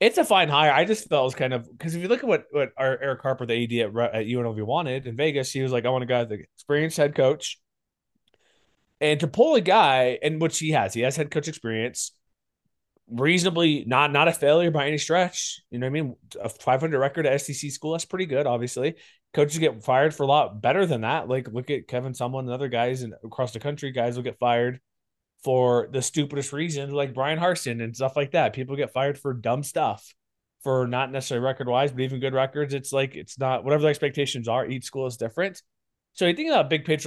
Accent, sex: American, male